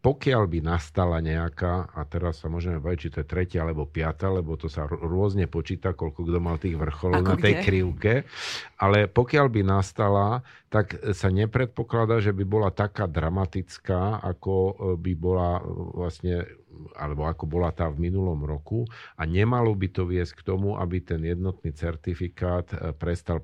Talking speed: 160 wpm